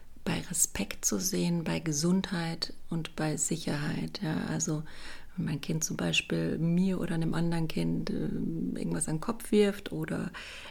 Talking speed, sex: 150 wpm, female